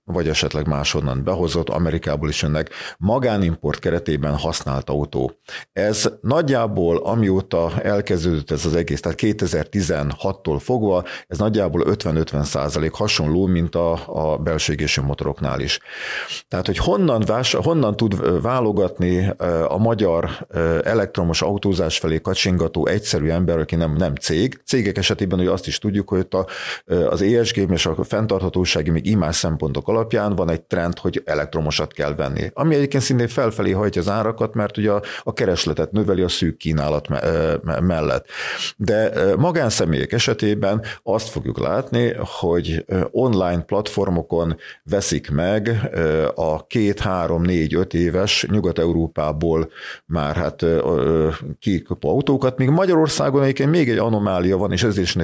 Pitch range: 80-105 Hz